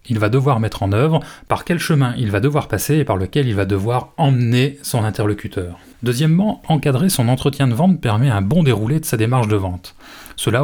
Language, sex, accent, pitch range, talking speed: French, male, French, 110-150 Hz, 215 wpm